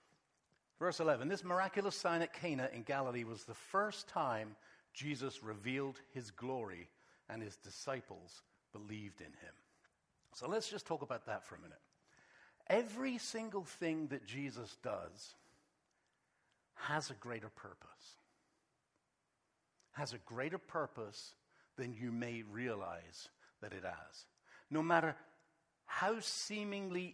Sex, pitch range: male, 145-200 Hz